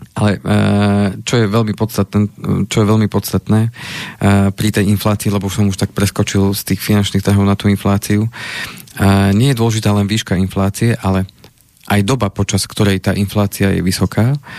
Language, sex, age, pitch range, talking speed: Slovak, male, 40-59, 100-110 Hz, 150 wpm